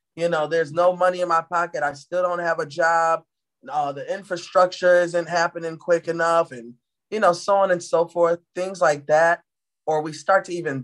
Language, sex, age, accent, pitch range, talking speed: English, male, 20-39, American, 145-175 Hz, 205 wpm